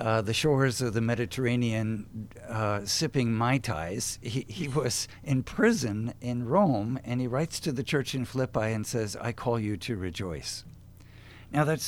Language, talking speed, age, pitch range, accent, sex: English, 170 wpm, 50-69, 105-135 Hz, American, male